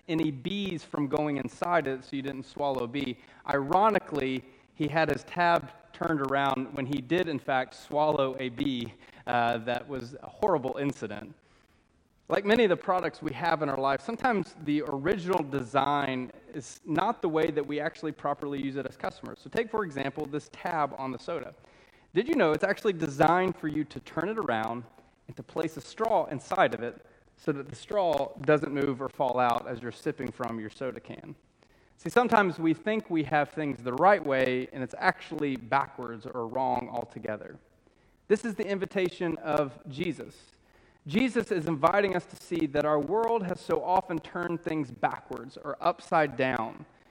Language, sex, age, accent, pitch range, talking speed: English, male, 30-49, American, 130-175 Hz, 185 wpm